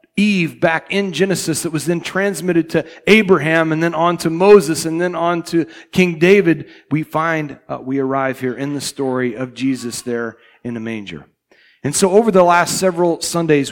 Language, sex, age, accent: English, male, 40-59, American